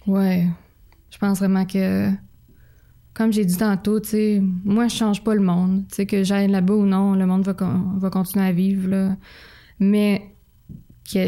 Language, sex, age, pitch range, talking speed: French, female, 20-39, 190-220 Hz, 185 wpm